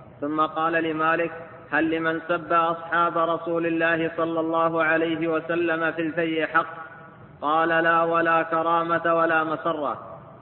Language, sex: Arabic, male